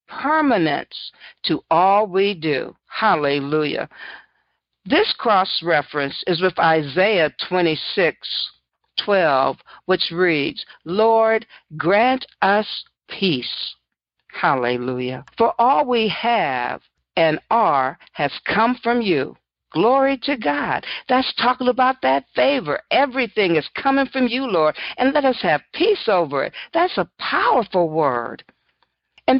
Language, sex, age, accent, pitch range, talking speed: English, female, 60-79, American, 180-260 Hz, 120 wpm